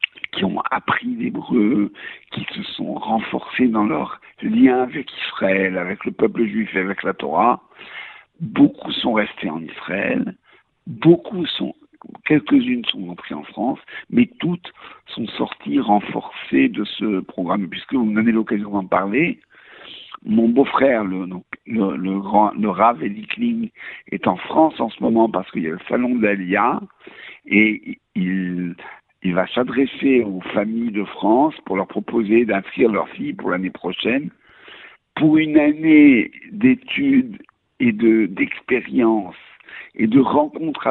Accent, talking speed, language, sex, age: French, 140 wpm, French, male, 60-79